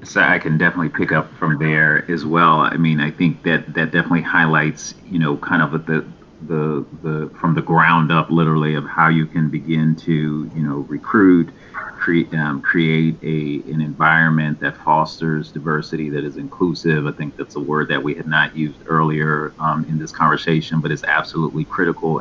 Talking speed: 190 wpm